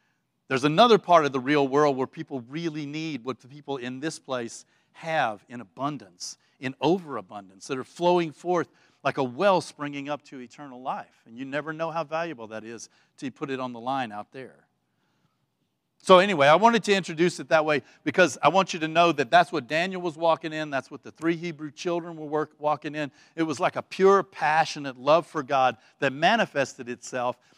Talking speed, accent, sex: 200 wpm, American, male